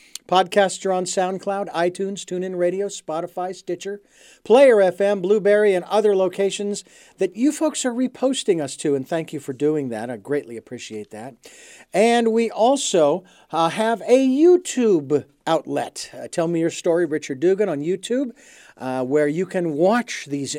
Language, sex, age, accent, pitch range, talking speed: English, male, 50-69, American, 145-205 Hz, 160 wpm